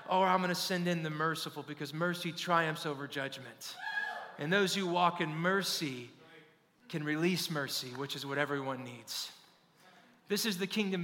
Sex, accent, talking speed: male, American, 165 wpm